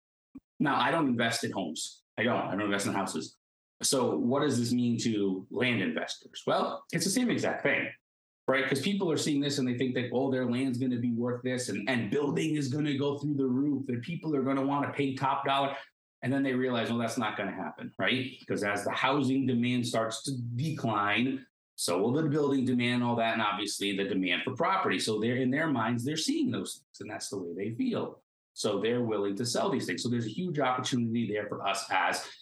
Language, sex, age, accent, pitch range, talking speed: English, male, 30-49, American, 115-135 Hz, 230 wpm